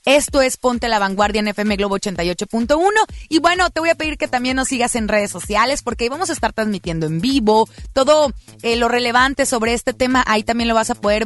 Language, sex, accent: Spanish, female, Mexican